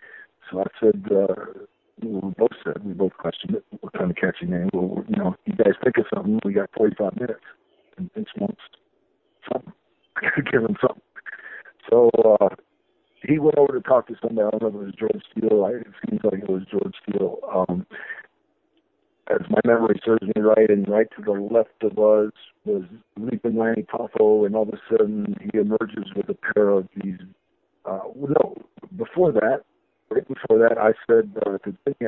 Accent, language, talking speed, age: American, English, 190 wpm, 50-69